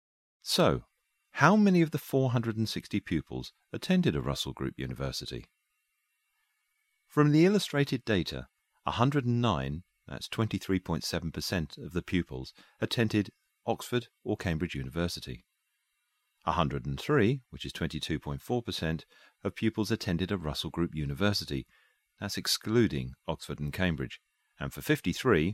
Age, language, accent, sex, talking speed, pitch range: 40-59, English, British, male, 110 wpm, 75-120 Hz